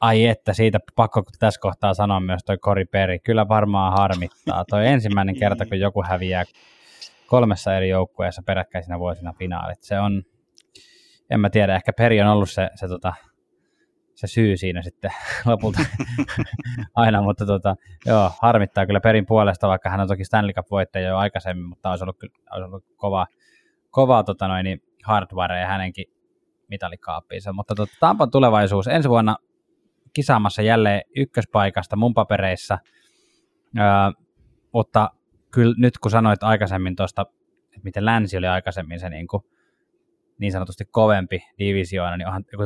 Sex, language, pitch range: male, Finnish, 95-110 Hz